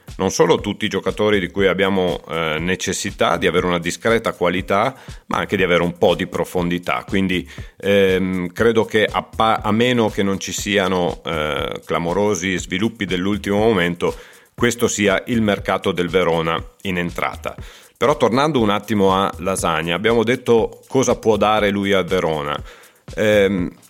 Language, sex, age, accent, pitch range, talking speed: Italian, male, 40-59, native, 90-110 Hz, 160 wpm